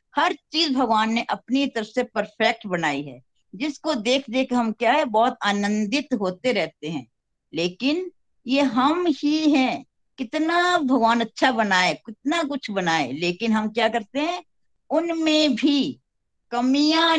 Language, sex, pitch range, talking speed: Hindi, female, 190-285 Hz, 145 wpm